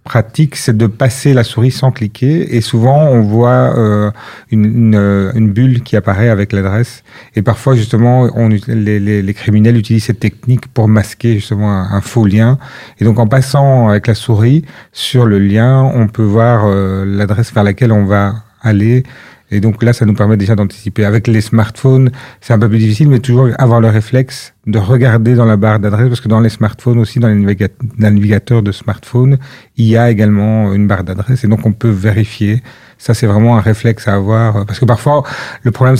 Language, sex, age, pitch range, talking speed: French, male, 40-59, 105-125 Hz, 200 wpm